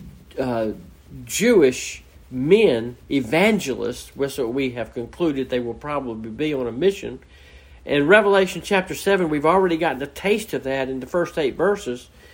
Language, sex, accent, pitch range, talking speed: English, male, American, 130-165 Hz, 155 wpm